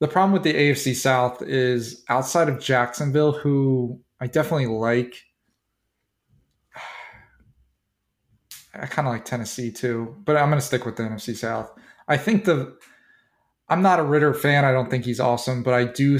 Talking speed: 165 wpm